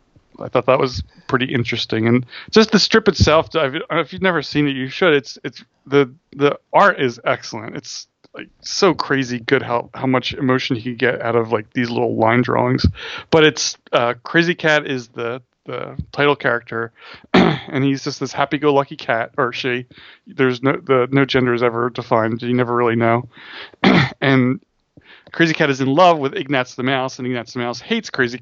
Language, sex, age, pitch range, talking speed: English, male, 30-49, 120-140 Hz, 190 wpm